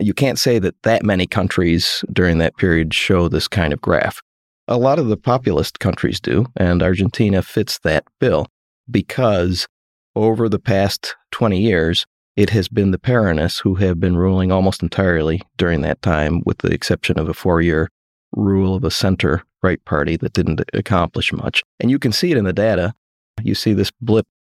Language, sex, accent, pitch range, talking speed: English, male, American, 90-110 Hz, 180 wpm